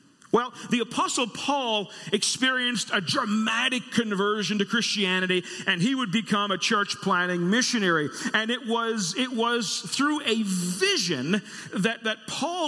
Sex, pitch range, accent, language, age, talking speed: male, 200-255 Hz, American, English, 40-59, 135 wpm